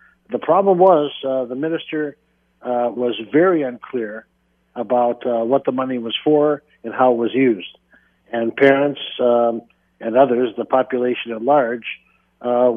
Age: 60-79